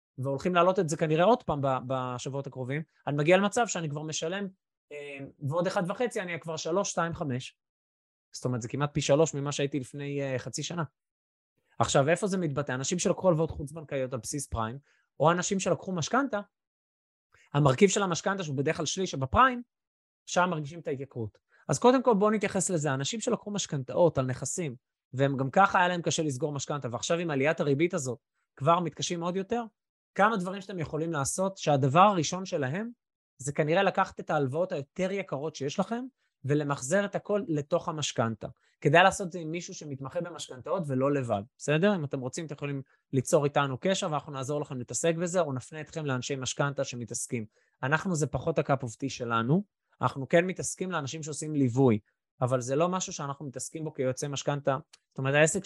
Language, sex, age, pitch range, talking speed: Hebrew, male, 20-39, 135-180 Hz, 155 wpm